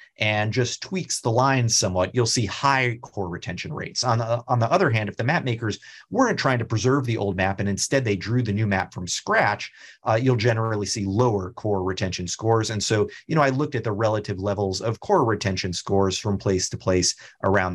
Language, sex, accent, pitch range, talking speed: English, male, American, 100-130 Hz, 215 wpm